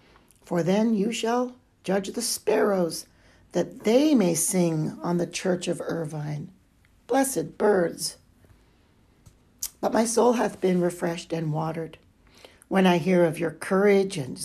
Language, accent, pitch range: English, American, 170-230 Hz